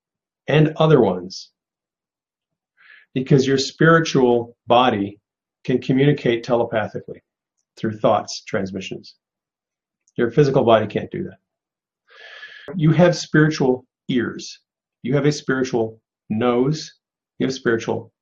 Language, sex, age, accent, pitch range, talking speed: English, male, 50-69, American, 120-170 Hz, 100 wpm